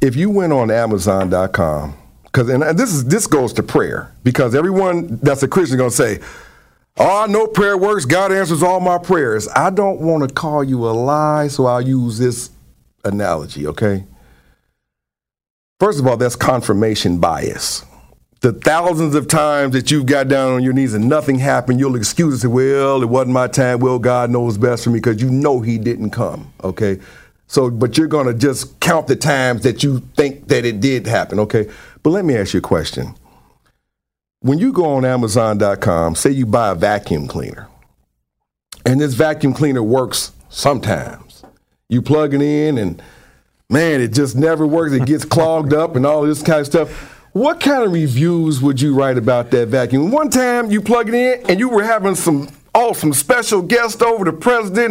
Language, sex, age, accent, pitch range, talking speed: English, male, 50-69, American, 120-160 Hz, 190 wpm